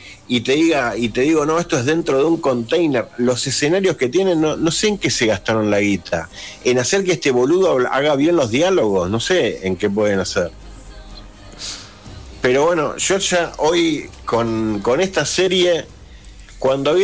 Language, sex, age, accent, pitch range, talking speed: Spanish, male, 50-69, Argentinian, 105-160 Hz, 185 wpm